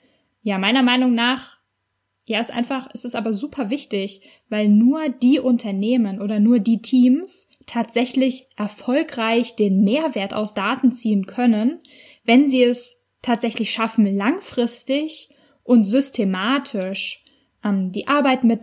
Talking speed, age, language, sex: 130 wpm, 10-29, German, female